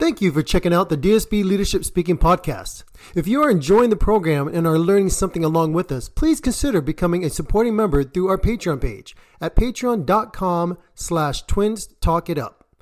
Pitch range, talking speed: 160-220 Hz, 175 wpm